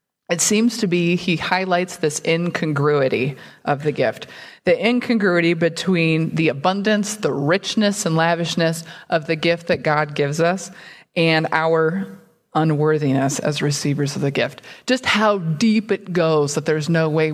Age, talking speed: 20-39, 150 wpm